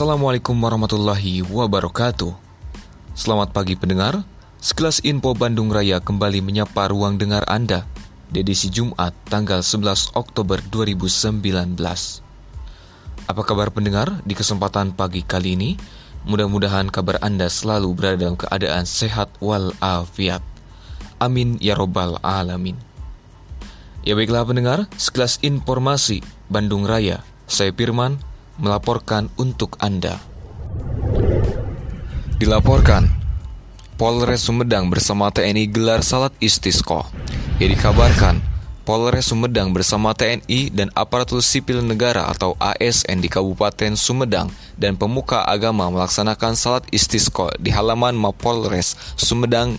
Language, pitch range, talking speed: Indonesian, 90-115 Hz, 105 wpm